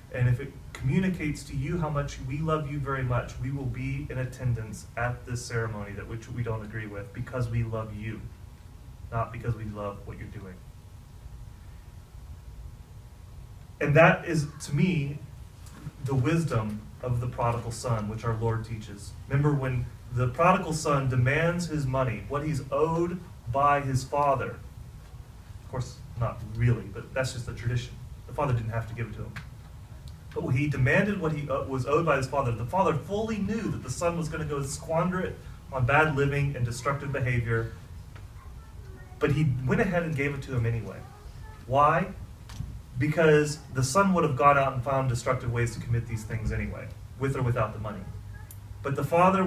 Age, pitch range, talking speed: 30-49, 110-145 Hz, 180 wpm